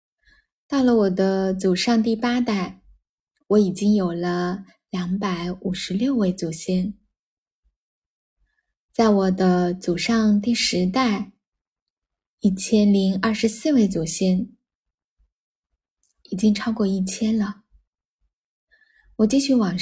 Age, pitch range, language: 10-29, 190-230 Hz, Chinese